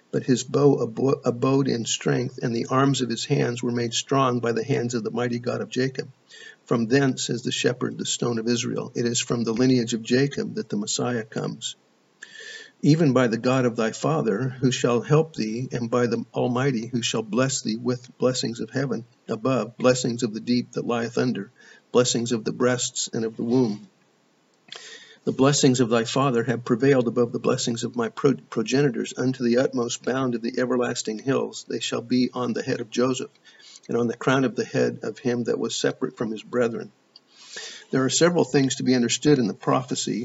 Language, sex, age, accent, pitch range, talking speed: English, male, 50-69, American, 120-135 Hz, 205 wpm